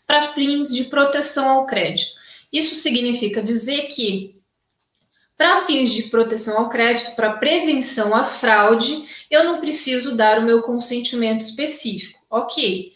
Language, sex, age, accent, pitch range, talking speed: Portuguese, female, 20-39, Brazilian, 230-285 Hz, 135 wpm